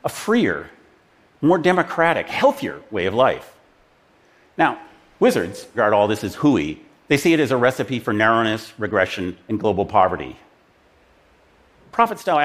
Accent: American